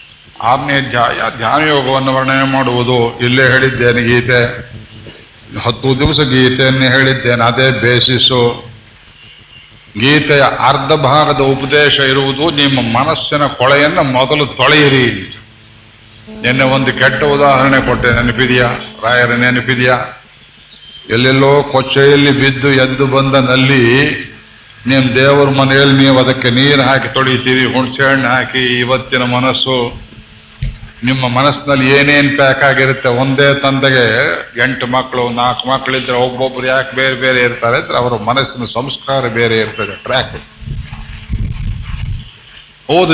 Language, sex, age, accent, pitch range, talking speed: Kannada, male, 50-69, native, 120-145 Hz, 100 wpm